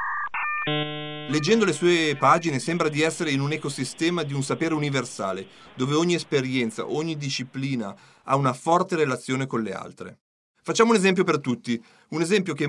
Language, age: Italian, 40-59